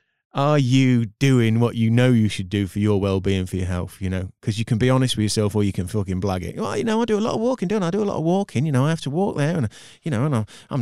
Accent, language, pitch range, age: British, English, 95-120 Hz, 30-49